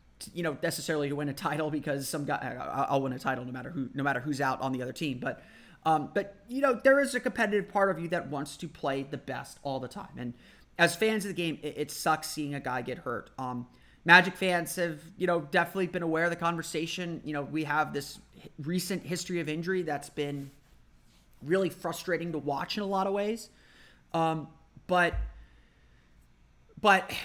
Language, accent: English, American